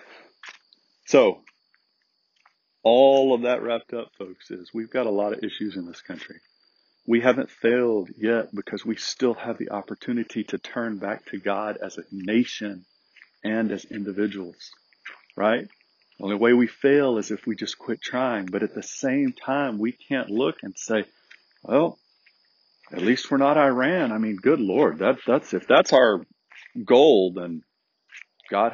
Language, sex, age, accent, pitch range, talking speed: English, male, 50-69, American, 100-115 Hz, 160 wpm